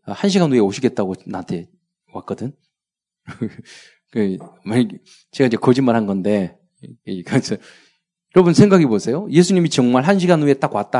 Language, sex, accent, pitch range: Korean, male, native, 125-185 Hz